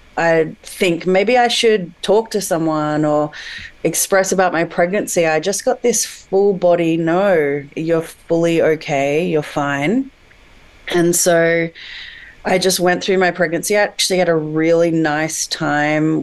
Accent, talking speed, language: Australian, 150 wpm, English